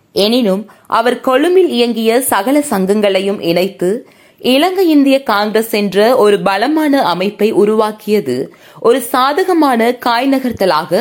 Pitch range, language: 205-275 Hz, Tamil